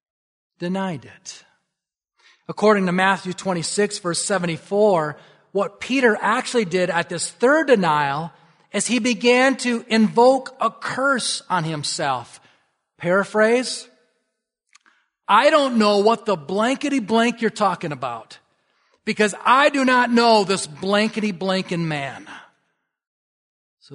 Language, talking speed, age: English, 115 wpm, 40-59